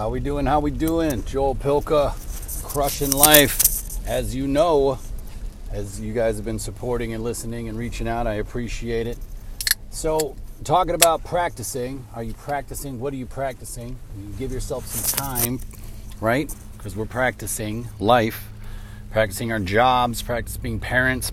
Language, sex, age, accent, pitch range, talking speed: English, male, 40-59, American, 110-135 Hz, 150 wpm